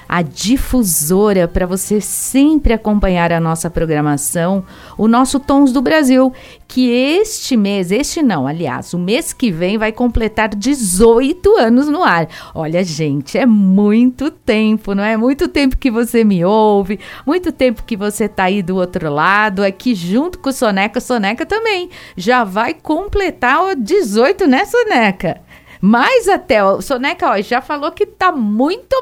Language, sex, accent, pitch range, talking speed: Portuguese, female, Brazilian, 190-265 Hz, 155 wpm